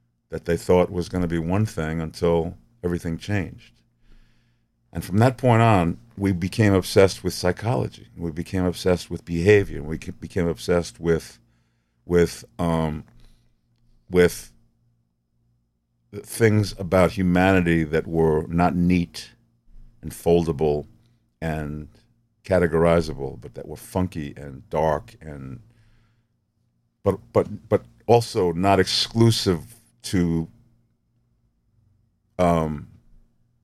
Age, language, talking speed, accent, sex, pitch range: 50-69, English, 105 wpm, American, male, 75-110 Hz